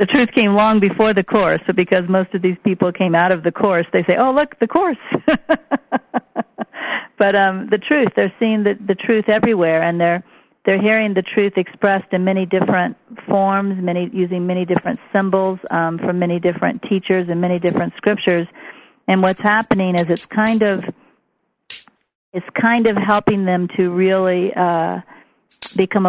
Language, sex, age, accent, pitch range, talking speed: English, female, 50-69, American, 175-205 Hz, 165 wpm